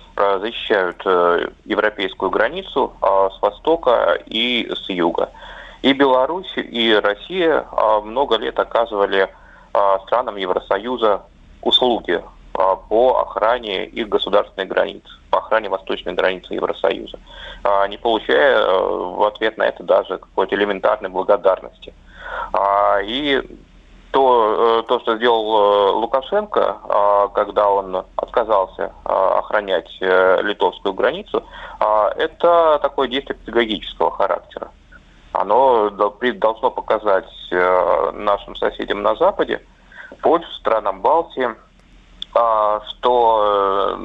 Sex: male